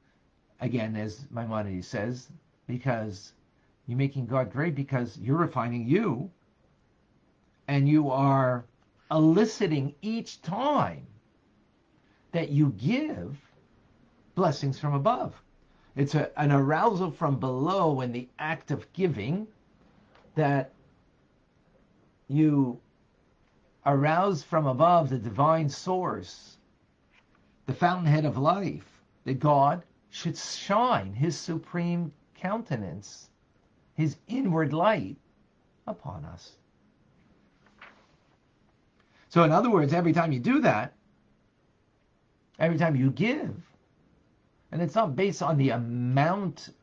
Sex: male